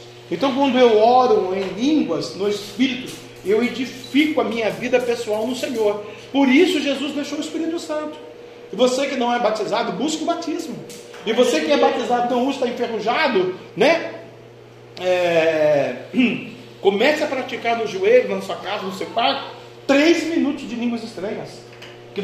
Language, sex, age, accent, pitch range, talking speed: Portuguese, male, 40-59, Brazilian, 215-285 Hz, 160 wpm